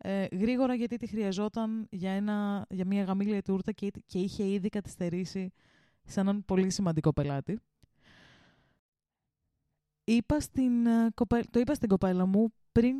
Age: 20-39